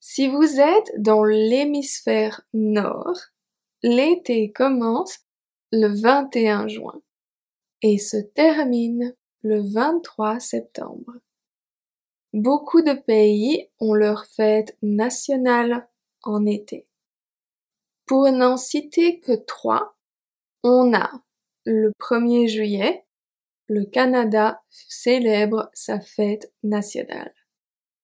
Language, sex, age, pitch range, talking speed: French, female, 20-39, 215-265 Hz, 90 wpm